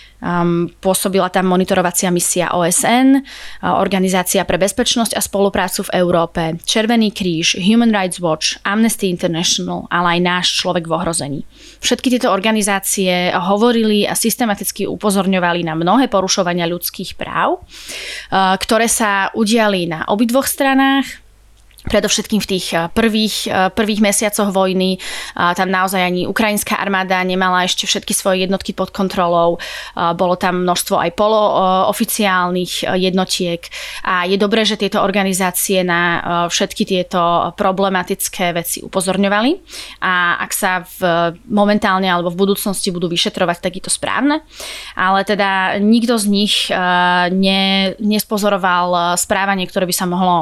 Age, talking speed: 20-39, 130 wpm